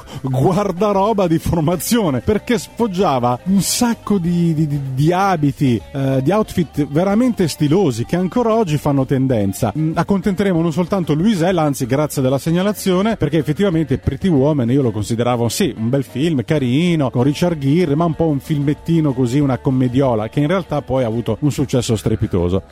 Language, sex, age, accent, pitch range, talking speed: Italian, male, 30-49, native, 130-175 Hz, 160 wpm